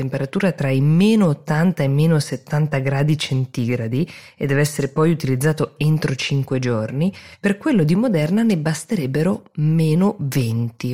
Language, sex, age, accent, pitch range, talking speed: Italian, female, 20-39, native, 130-160 Hz, 145 wpm